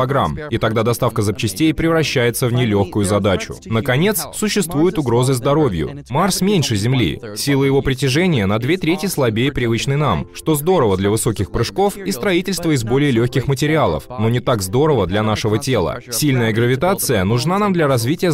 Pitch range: 110-150 Hz